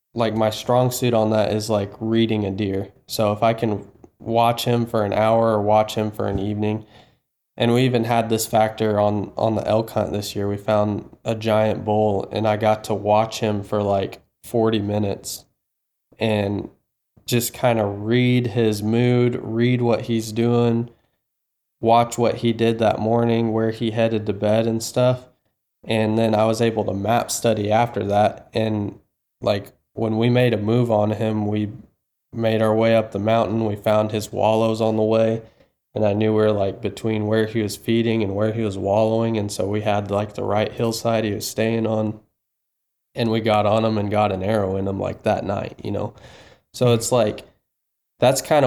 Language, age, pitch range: English, 20-39, 105-115 Hz